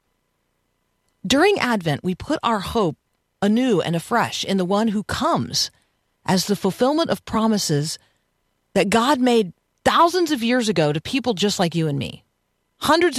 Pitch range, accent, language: 170-235 Hz, American, English